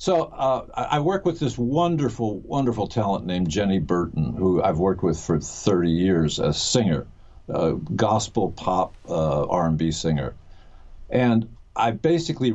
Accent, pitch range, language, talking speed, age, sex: American, 100-135 Hz, English, 145 wpm, 60-79, male